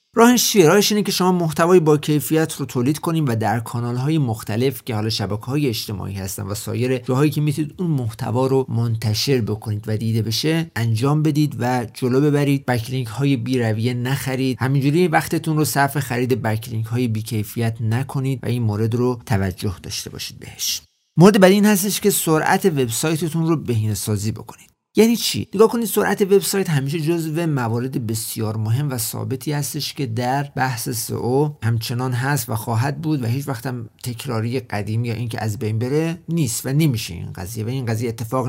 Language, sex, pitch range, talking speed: Persian, male, 115-160 Hz, 175 wpm